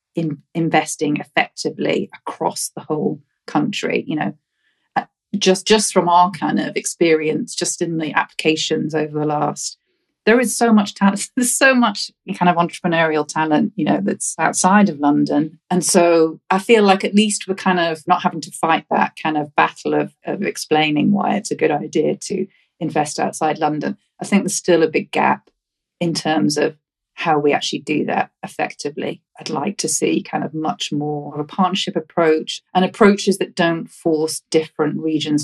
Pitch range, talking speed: 150-180 Hz, 180 wpm